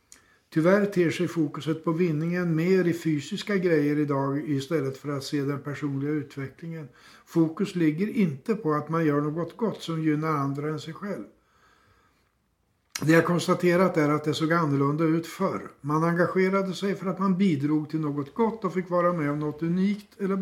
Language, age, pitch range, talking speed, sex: Swedish, 60-79, 150-185 Hz, 180 wpm, male